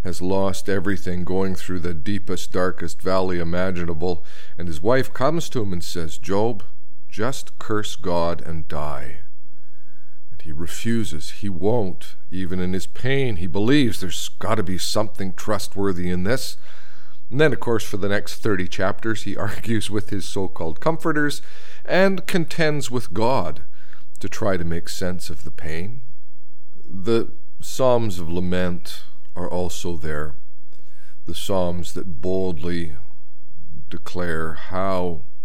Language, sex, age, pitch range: English, male, 50-69, 85-105 Hz